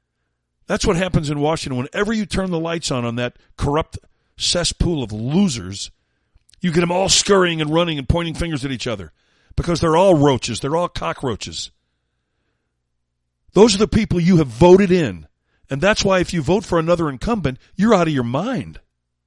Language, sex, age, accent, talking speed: English, male, 50-69, American, 185 wpm